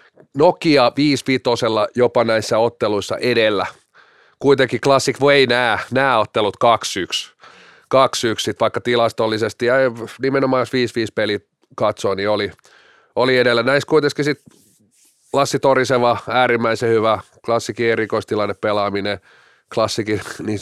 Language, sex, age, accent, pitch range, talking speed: Finnish, male, 30-49, native, 110-135 Hz, 110 wpm